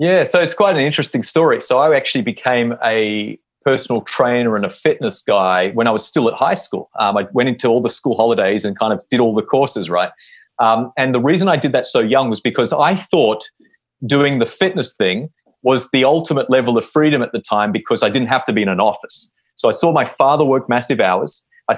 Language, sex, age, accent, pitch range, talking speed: English, male, 30-49, Australian, 115-145 Hz, 235 wpm